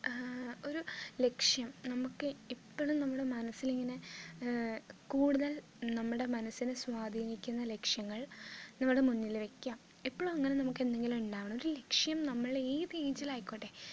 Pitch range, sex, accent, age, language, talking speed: 215-265 Hz, female, native, 20-39, Malayalam, 105 wpm